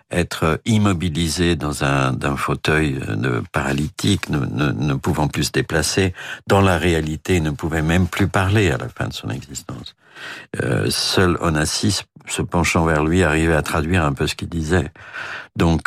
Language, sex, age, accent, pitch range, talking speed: French, male, 60-79, French, 80-100 Hz, 165 wpm